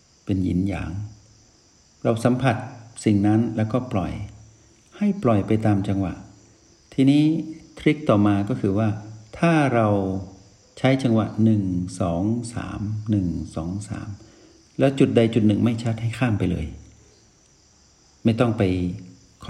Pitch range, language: 90-110 Hz, Thai